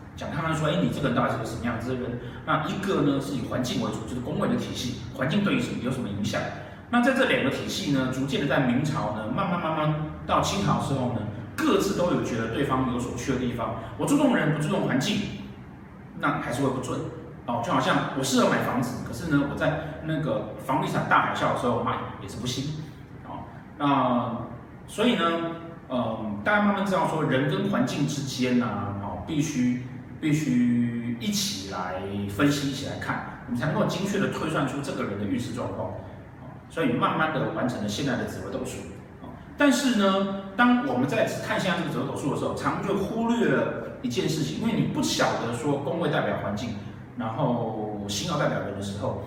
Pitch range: 120-160 Hz